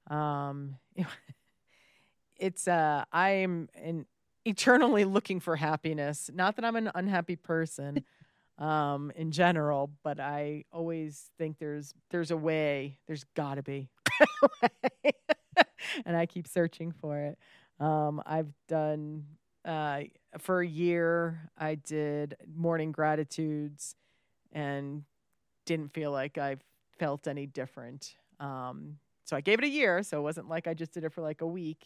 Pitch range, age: 140-170 Hz, 40-59